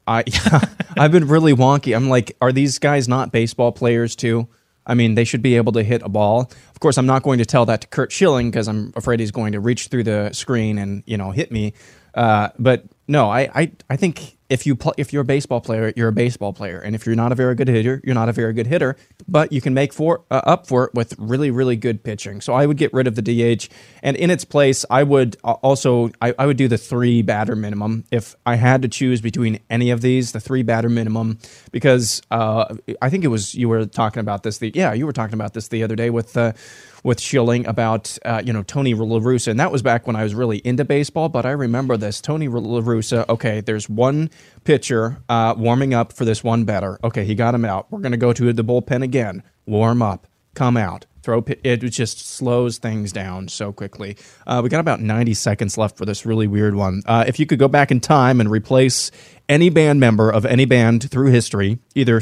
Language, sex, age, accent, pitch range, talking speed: English, male, 20-39, American, 110-130 Hz, 240 wpm